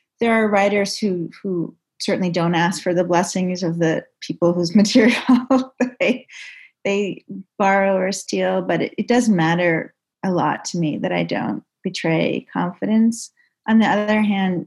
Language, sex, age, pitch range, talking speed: English, female, 30-49, 170-200 Hz, 160 wpm